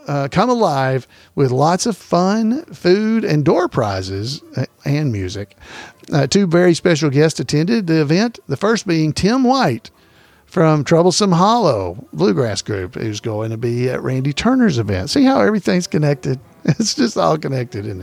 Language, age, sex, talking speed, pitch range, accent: English, 50-69, male, 160 wpm, 130-185 Hz, American